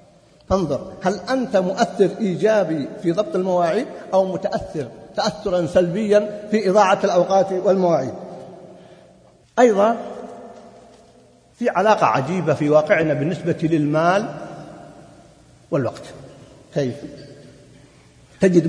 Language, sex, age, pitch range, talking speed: Arabic, male, 50-69, 155-210 Hz, 85 wpm